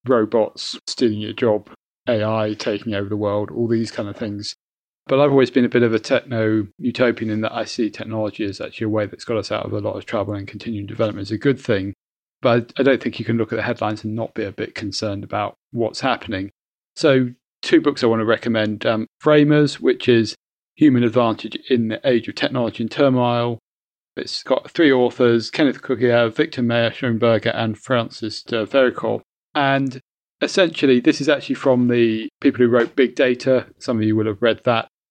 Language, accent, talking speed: English, British, 200 wpm